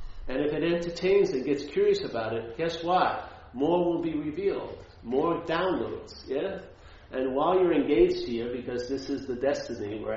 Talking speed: 170 wpm